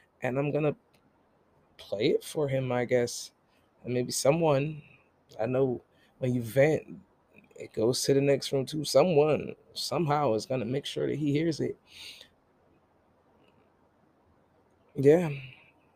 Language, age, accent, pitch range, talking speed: English, 20-39, American, 125-155 Hz, 130 wpm